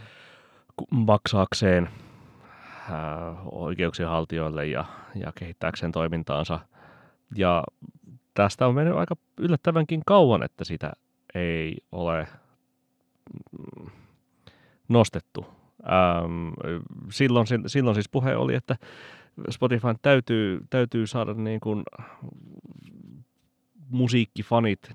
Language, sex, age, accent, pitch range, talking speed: Finnish, male, 30-49, native, 80-115 Hz, 80 wpm